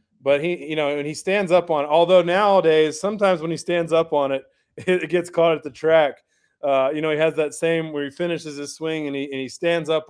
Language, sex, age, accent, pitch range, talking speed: English, male, 30-49, American, 140-175 Hz, 255 wpm